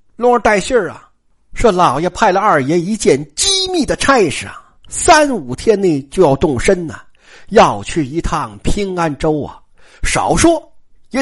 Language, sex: Chinese, male